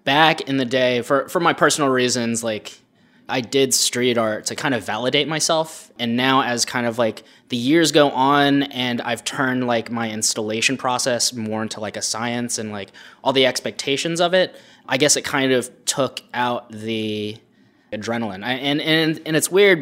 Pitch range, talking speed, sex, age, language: 110-130 Hz, 190 wpm, male, 20-39, English